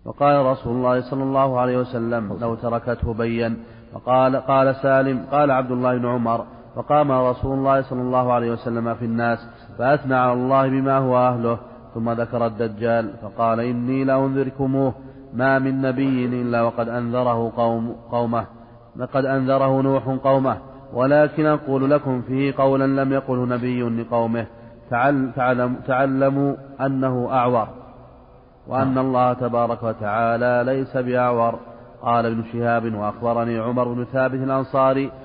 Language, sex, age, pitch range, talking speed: Arabic, male, 40-59, 115-135 Hz, 135 wpm